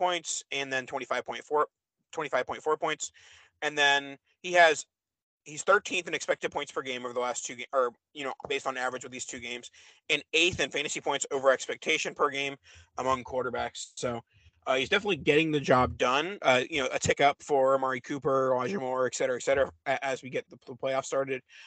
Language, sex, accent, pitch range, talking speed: English, male, American, 130-170 Hz, 200 wpm